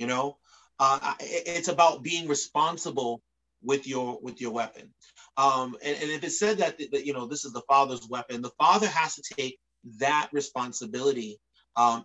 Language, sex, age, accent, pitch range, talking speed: English, male, 30-49, American, 125-155 Hz, 180 wpm